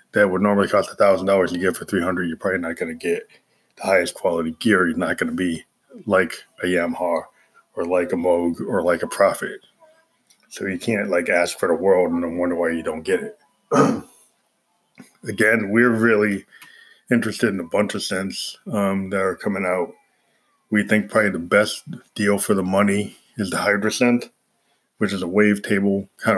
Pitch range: 90-110 Hz